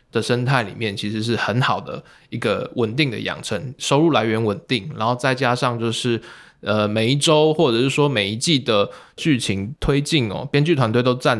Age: 20-39